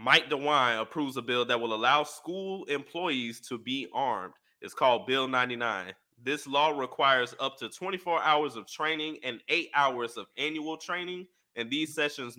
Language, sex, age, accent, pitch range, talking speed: English, male, 20-39, American, 125-165 Hz, 170 wpm